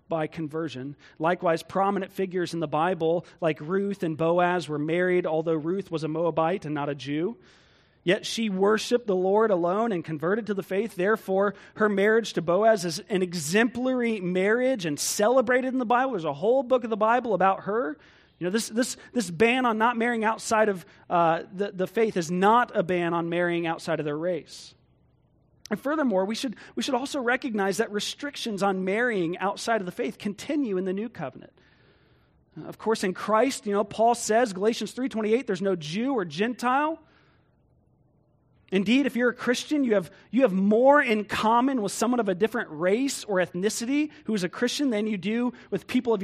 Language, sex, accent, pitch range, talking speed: English, male, American, 180-235 Hz, 195 wpm